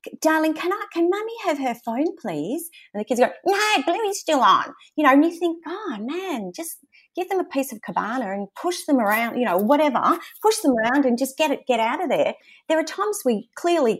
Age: 30-49